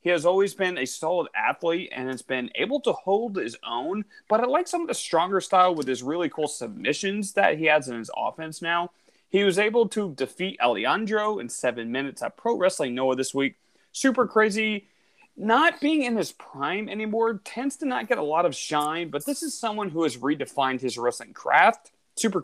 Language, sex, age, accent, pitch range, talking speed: English, male, 30-49, American, 150-230 Hz, 205 wpm